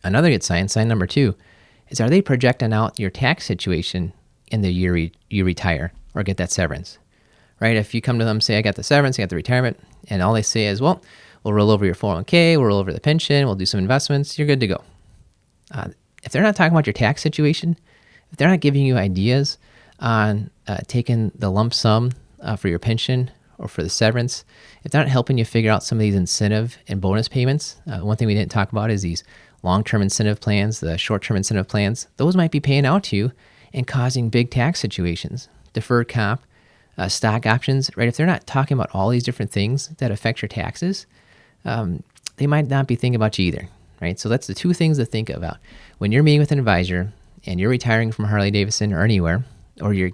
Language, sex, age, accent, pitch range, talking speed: English, male, 30-49, American, 100-130 Hz, 220 wpm